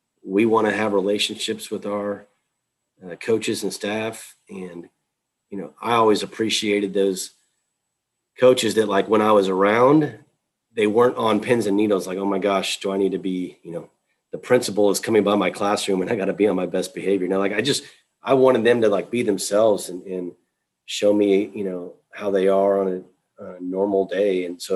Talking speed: 205 wpm